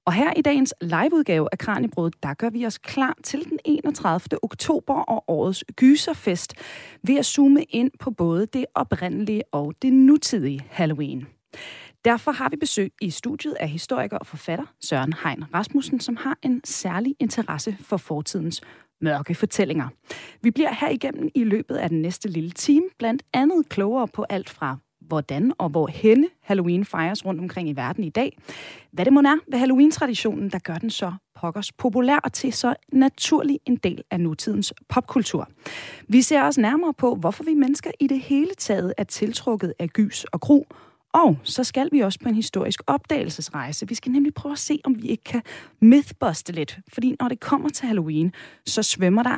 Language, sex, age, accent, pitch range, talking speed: Danish, female, 30-49, native, 175-275 Hz, 180 wpm